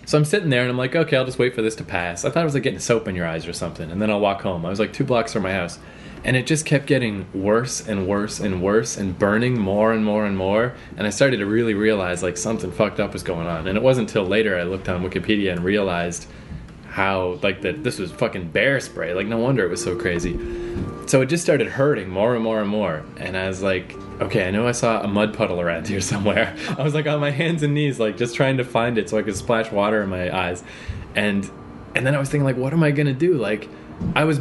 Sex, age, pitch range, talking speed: male, 20-39, 100-130 Hz, 275 wpm